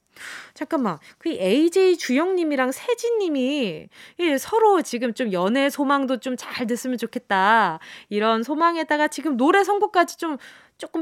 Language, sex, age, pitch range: Korean, female, 20-39, 215-320 Hz